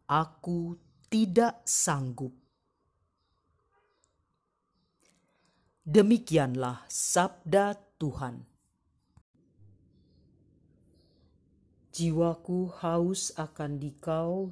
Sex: female